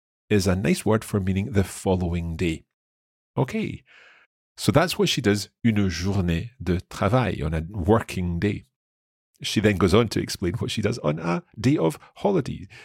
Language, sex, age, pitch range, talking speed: English, male, 40-59, 85-120 Hz, 175 wpm